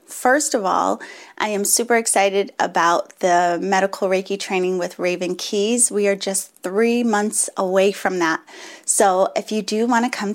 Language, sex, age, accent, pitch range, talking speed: English, female, 30-49, American, 190-230 Hz, 175 wpm